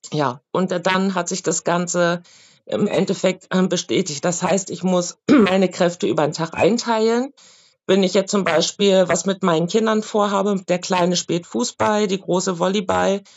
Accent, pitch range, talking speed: German, 180-200 Hz, 165 wpm